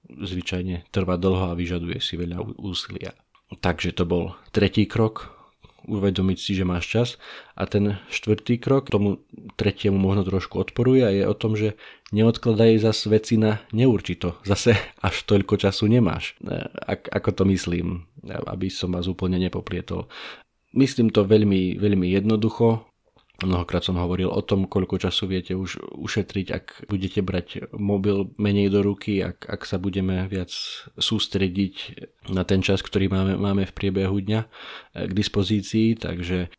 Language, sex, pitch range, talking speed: Slovak, male, 90-105 Hz, 150 wpm